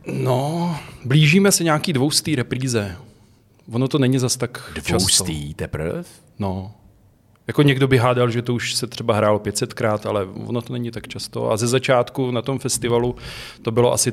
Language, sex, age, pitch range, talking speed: Czech, male, 30-49, 105-125 Hz, 175 wpm